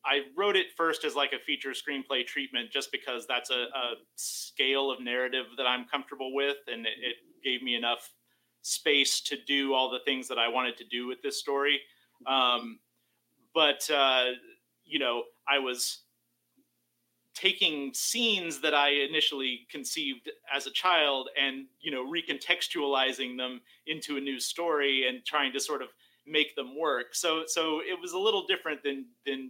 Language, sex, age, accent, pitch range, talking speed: English, male, 30-49, American, 120-150 Hz, 170 wpm